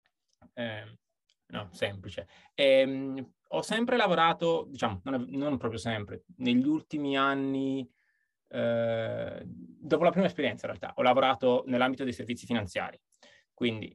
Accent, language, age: native, Italian, 20-39